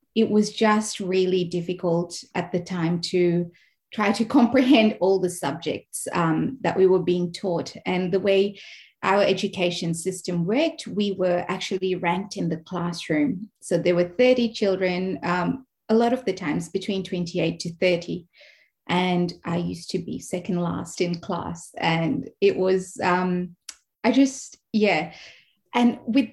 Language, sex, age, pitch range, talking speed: English, female, 30-49, 175-200 Hz, 155 wpm